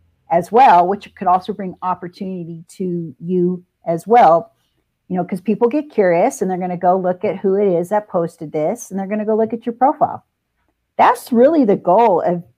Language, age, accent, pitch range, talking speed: English, 50-69, American, 180-235 Hz, 200 wpm